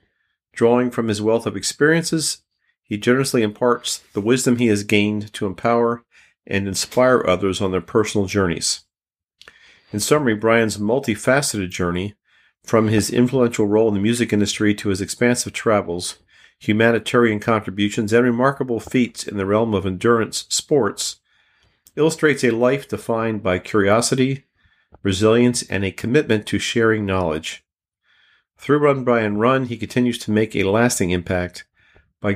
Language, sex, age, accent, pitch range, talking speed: English, male, 50-69, American, 100-120 Hz, 145 wpm